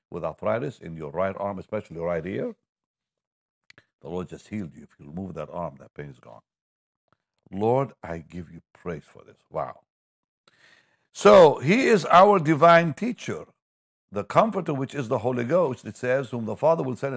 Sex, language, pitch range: male, English, 110-160 Hz